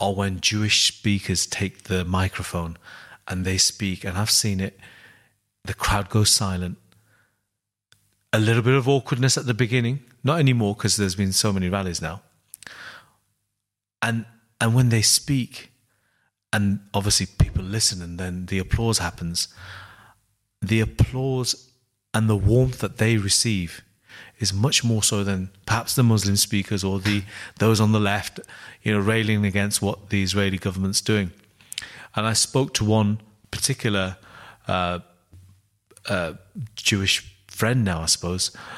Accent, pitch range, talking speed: British, 95-115 Hz, 145 wpm